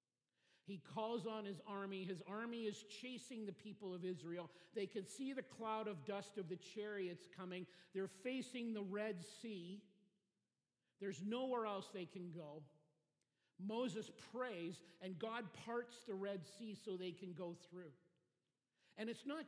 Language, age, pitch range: English, 50-69, 170-210 Hz